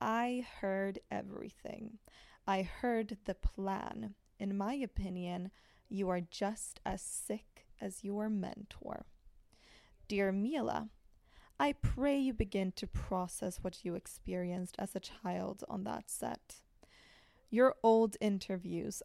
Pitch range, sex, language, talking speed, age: 185-220 Hz, female, Swedish, 120 wpm, 20-39